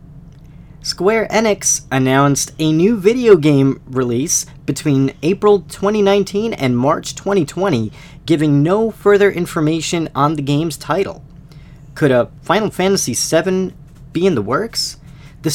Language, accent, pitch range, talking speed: English, American, 140-185 Hz, 125 wpm